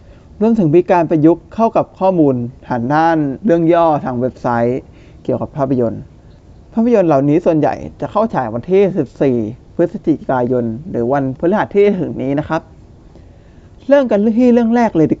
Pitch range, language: 110-170 Hz, Thai